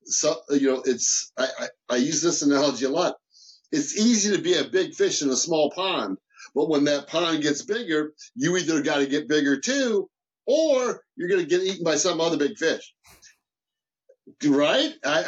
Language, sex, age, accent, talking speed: English, male, 50-69, American, 195 wpm